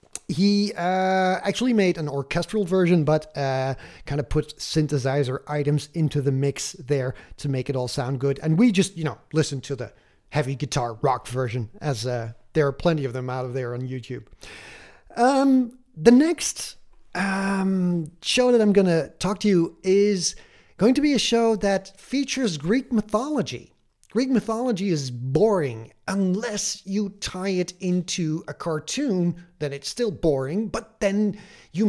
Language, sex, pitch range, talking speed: English, male, 140-200 Hz, 165 wpm